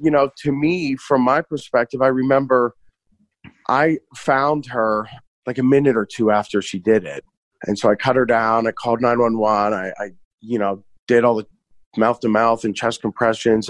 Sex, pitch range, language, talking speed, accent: male, 100-120 Hz, English, 190 wpm, American